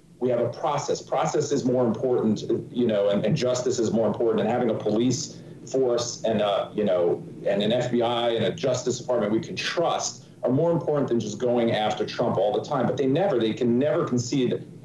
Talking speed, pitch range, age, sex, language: 210 wpm, 120-170 Hz, 40-59, male, English